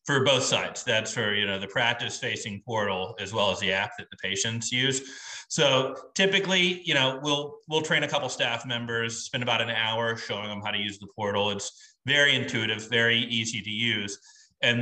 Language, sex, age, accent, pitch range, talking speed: English, male, 30-49, American, 105-130 Hz, 200 wpm